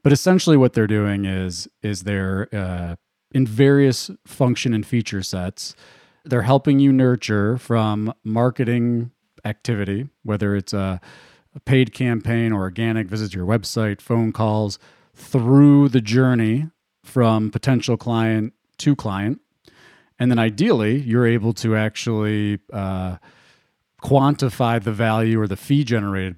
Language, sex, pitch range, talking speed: English, male, 100-125 Hz, 135 wpm